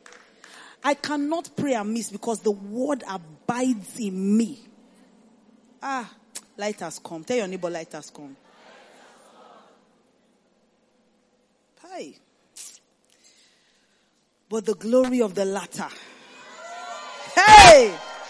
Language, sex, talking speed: English, female, 90 wpm